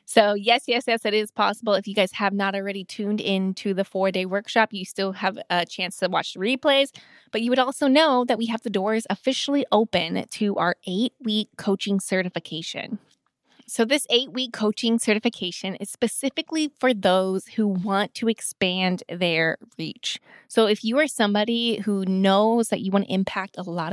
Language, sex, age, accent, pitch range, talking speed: English, female, 20-39, American, 190-230 Hz, 185 wpm